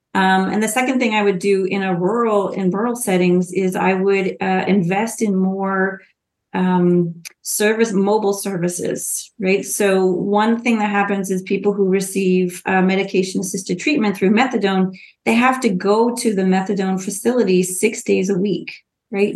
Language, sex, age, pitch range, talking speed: English, female, 30-49, 190-215 Hz, 165 wpm